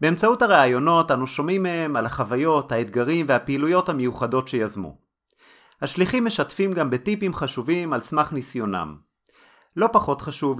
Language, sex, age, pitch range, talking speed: Hebrew, male, 30-49, 130-180 Hz, 125 wpm